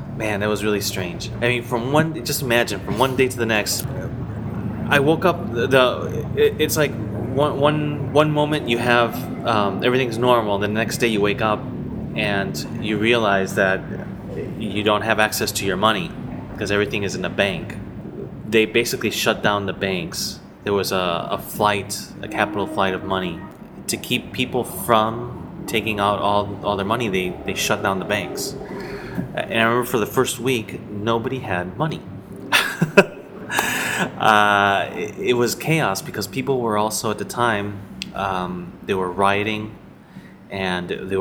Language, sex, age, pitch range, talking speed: English, male, 30-49, 100-125 Hz, 170 wpm